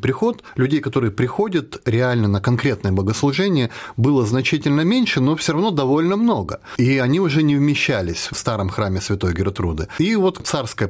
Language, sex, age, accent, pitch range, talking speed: Russian, male, 30-49, native, 105-145 Hz, 160 wpm